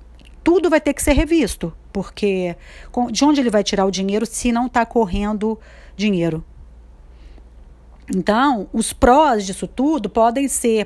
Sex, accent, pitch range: female, Brazilian, 195-235 Hz